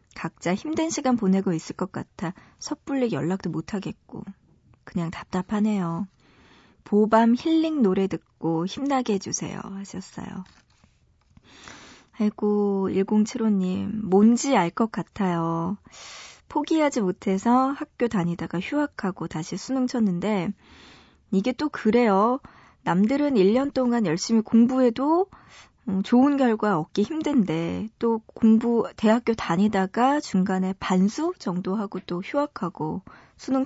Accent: native